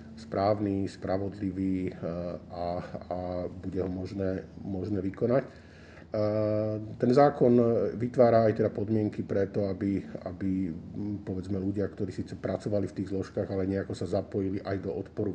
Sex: male